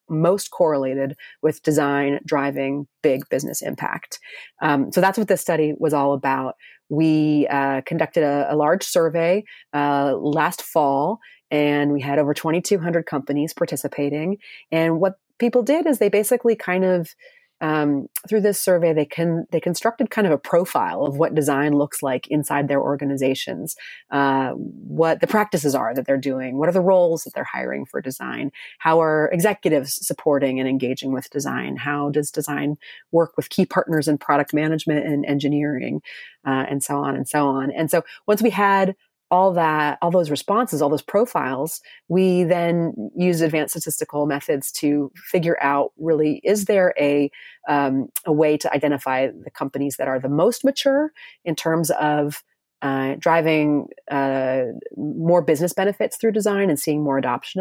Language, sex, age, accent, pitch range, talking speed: English, female, 30-49, American, 140-175 Hz, 165 wpm